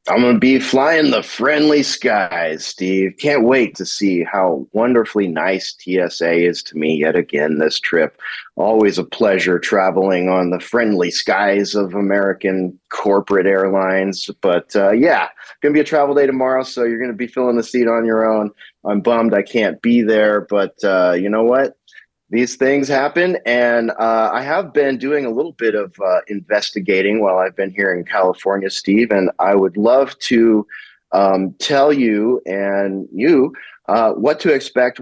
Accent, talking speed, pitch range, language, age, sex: American, 175 wpm, 100-120 Hz, English, 30-49, male